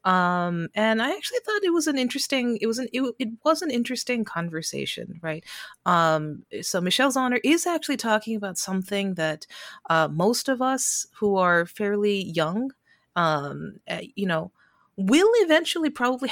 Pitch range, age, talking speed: 170-230 Hz, 30-49, 160 wpm